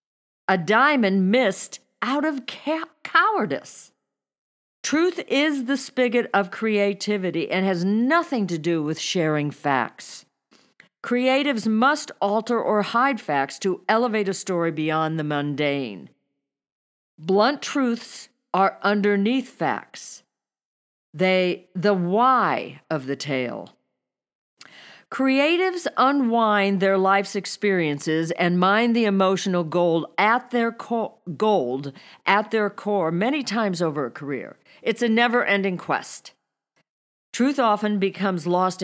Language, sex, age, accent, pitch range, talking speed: English, female, 50-69, American, 165-235 Hz, 110 wpm